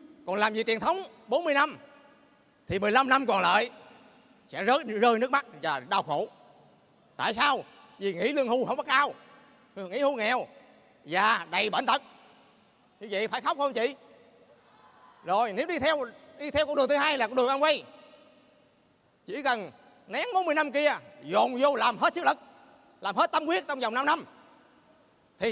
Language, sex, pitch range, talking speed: Vietnamese, male, 225-295 Hz, 185 wpm